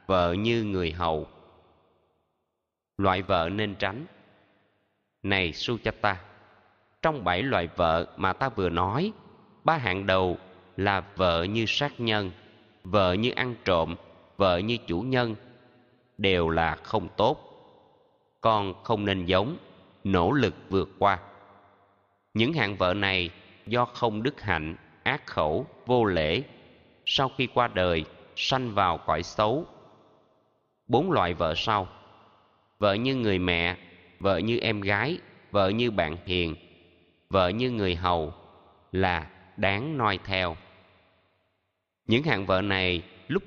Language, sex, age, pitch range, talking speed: Vietnamese, male, 20-39, 90-115 Hz, 135 wpm